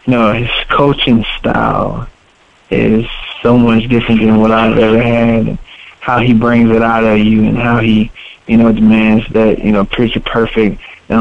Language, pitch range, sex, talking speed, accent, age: English, 110-120 Hz, male, 180 wpm, American, 20-39